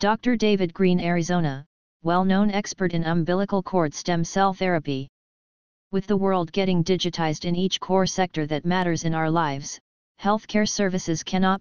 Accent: American